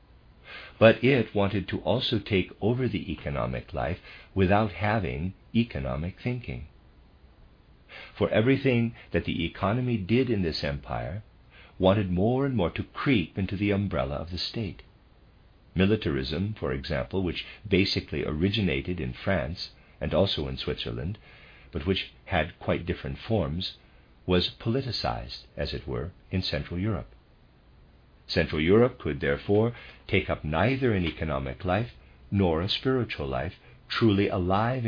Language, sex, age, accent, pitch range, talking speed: English, male, 50-69, American, 75-110 Hz, 130 wpm